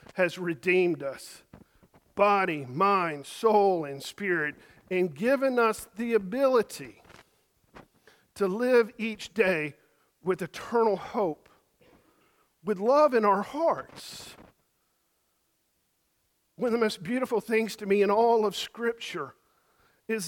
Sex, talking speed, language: male, 110 wpm, English